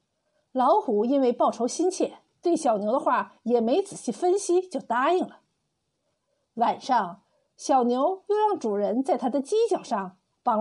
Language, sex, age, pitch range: Chinese, female, 50-69, 230-330 Hz